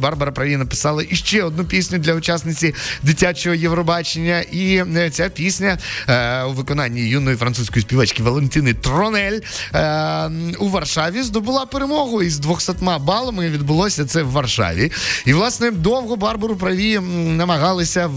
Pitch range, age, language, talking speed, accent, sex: 120-170 Hz, 20-39, Ukrainian, 130 wpm, native, male